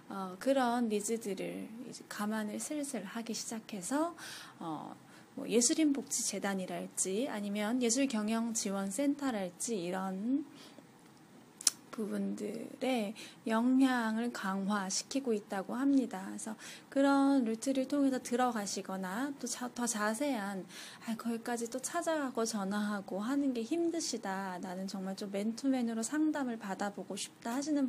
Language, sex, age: Korean, female, 20-39